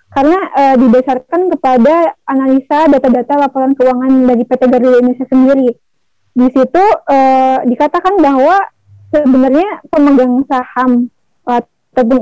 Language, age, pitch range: Indonesian, 20-39, 255-280 Hz